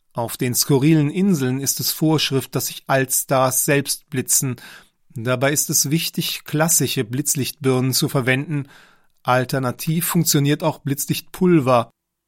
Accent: German